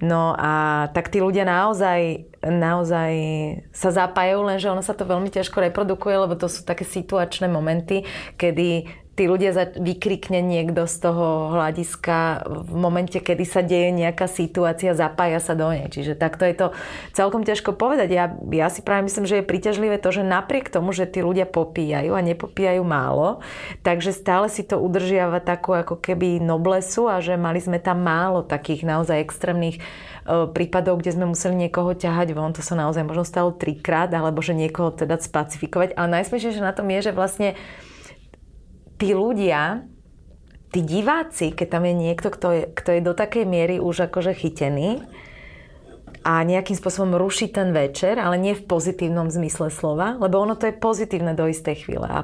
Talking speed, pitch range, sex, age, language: 170 wpm, 165-190 Hz, female, 30-49, Slovak